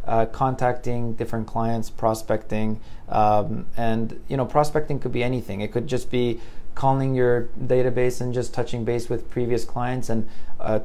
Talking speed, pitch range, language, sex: 160 wpm, 115-125 Hz, English, male